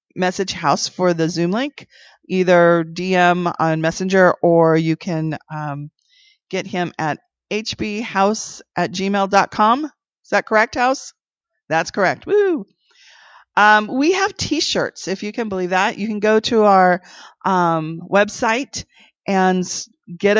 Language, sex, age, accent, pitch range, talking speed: English, female, 30-49, American, 170-220 Hz, 130 wpm